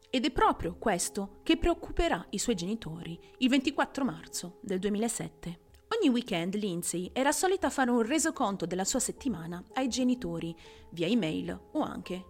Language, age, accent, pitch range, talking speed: Italian, 30-49, native, 175-245 Hz, 150 wpm